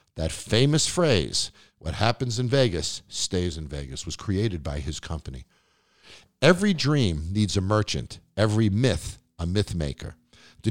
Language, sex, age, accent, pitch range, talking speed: English, male, 50-69, American, 95-130 Hz, 145 wpm